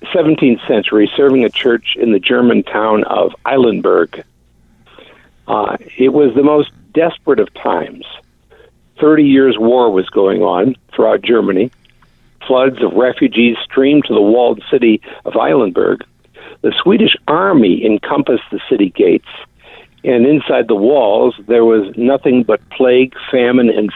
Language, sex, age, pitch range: English, male, 50-69, 115-145 Hz